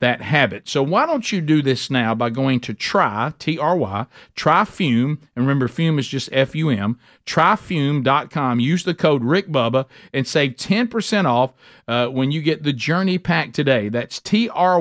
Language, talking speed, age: English, 180 wpm, 50-69